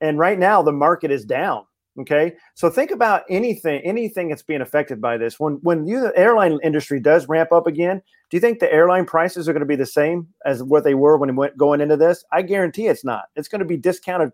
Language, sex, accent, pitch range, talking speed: English, male, American, 140-180 Hz, 245 wpm